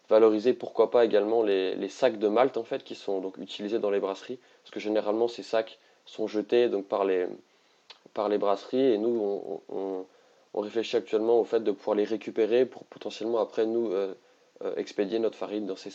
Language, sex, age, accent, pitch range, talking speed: French, male, 20-39, French, 100-115 Hz, 205 wpm